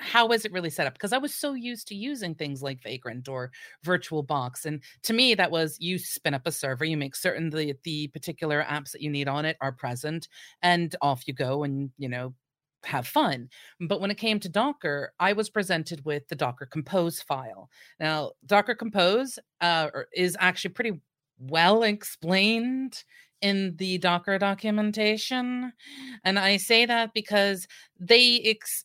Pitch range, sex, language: 145-210 Hz, female, English